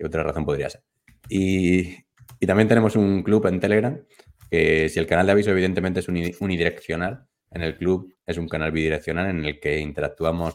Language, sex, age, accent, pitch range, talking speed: Spanish, male, 20-39, Spanish, 80-95 Hz, 180 wpm